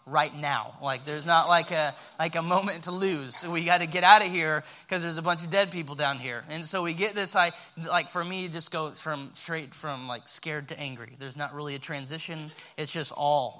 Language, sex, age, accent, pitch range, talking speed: English, male, 20-39, American, 145-170 Hz, 245 wpm